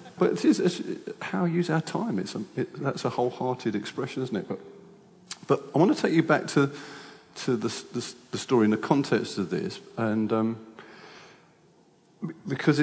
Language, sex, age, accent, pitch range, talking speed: English, male, 40-59, British, 110-160 Hz, 185 wpm